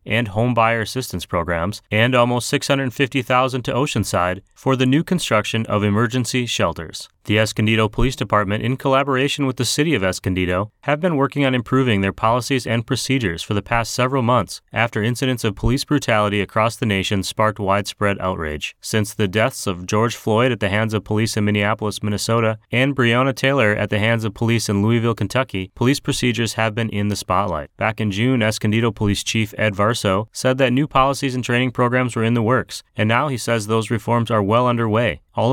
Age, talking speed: 30-49, 195 wpm